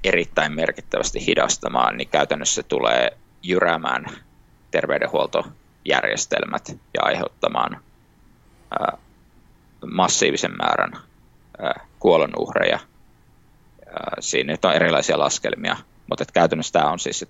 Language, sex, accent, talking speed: Finnish, male, native, 95 wpm